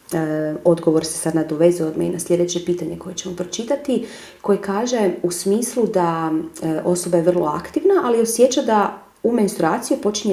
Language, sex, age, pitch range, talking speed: Croatian, female, 30-49, 170-225 Hz, 165 wpm